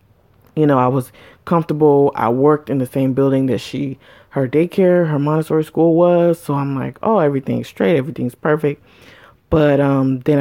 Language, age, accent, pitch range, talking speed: English, 20-39, American, 130-155 Hz, 175 wpm